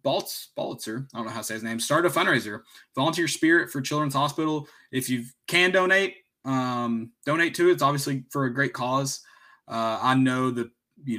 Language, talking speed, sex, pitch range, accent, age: English, 195 wpm, male, 105-135 Hz, American, 20-39